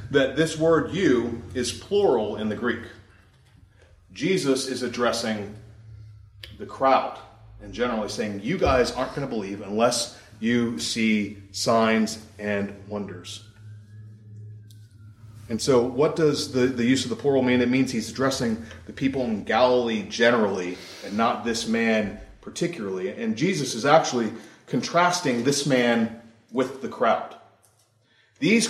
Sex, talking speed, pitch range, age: male, 135 wpm, 105-135 Hz, 30-49